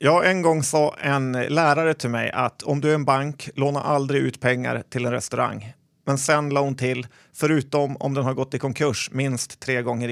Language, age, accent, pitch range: Swedish, 30-49, native, 125-145 Hz